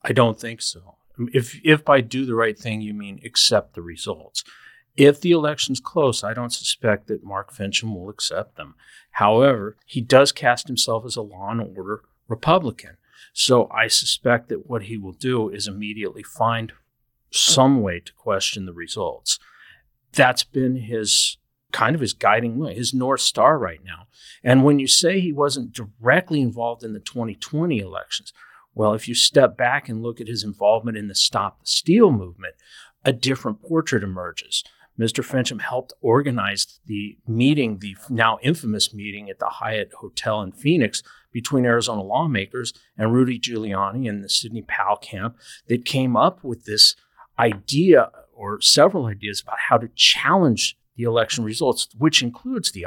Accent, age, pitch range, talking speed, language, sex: American, 50-69, 105-130 Hz, 170 wpm, English, male